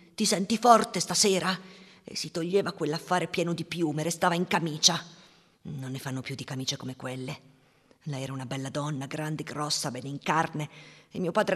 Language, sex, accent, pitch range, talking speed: Italian, female, native, 145-175 Hz, 180 wpm